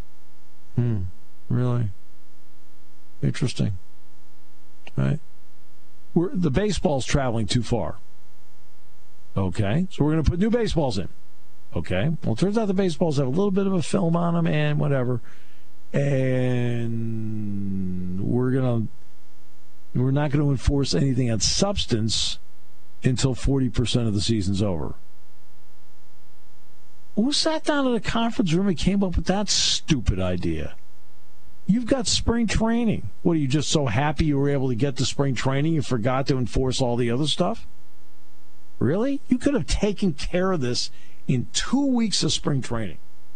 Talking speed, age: 150 wpm, 50-69